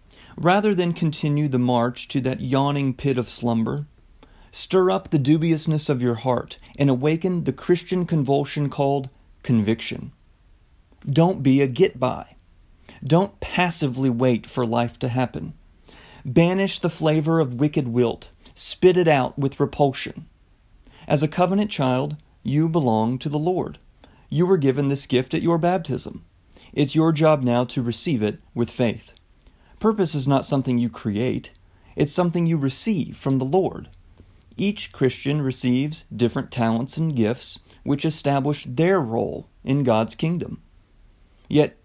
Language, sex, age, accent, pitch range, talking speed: English, male, 40-59, American, 120-160 Hz, 145 wpm